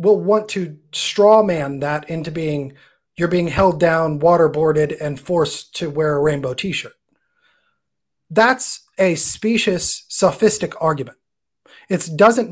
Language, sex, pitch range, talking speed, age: English, male, 155-200 Hz, 130 wpm, 30-49